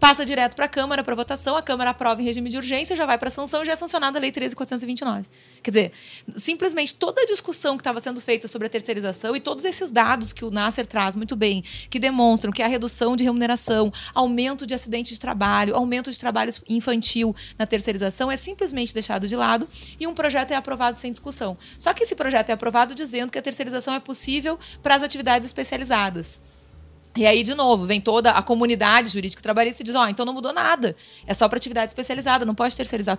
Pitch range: 210-265 Hz